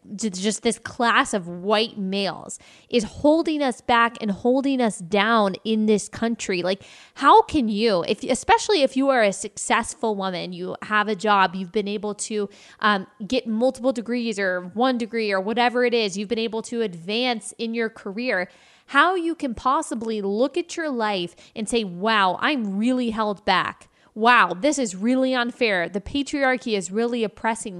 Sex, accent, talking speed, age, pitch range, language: female, American, 175 wpm, 20-39, 205-255 Hz, English